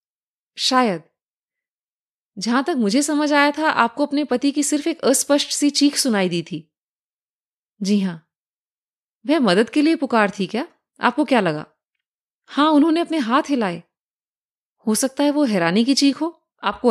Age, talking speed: 30-49, 160 wpm